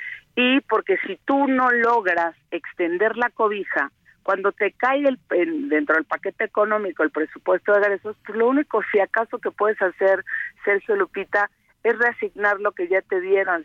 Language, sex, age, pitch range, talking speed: Spanish, female, 50-69, 175-220 Hz, 165 wpm